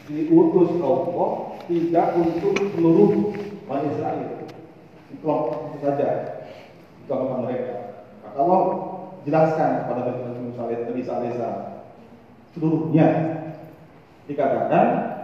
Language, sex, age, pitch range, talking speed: Malay, male, 40-59, 115-155 Hz, 80 wpm